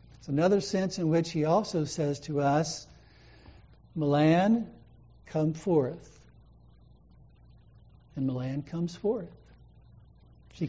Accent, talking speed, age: American, 95 wpm, 60-79